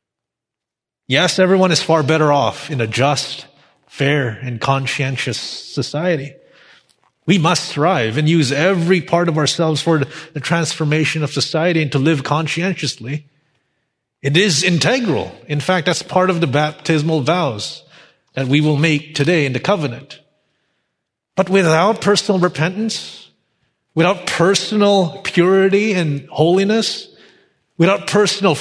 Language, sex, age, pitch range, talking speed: English, male, 30-49, 140-175 Hz, 130 wpm